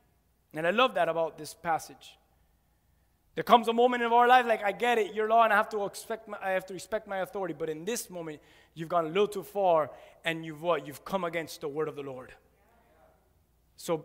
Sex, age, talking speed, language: male, 30-49, 225 wpm, English